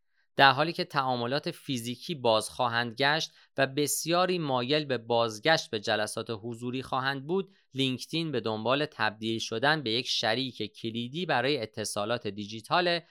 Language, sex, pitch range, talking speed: Persian, male, 110-150 Hz, 135 wpm